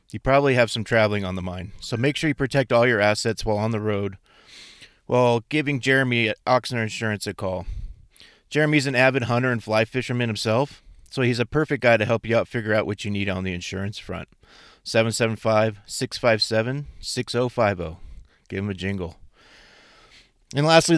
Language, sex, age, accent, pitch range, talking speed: English, male, 30-49, American, 105-125 Hz, 175 wpm